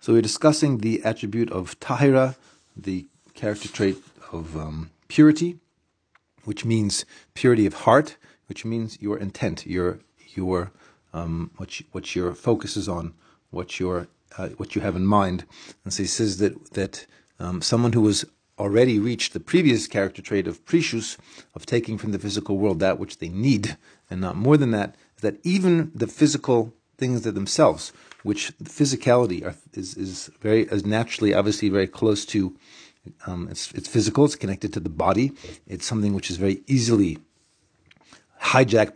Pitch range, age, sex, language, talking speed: 95-120 Hz, 40-59, male, English, 170 wpm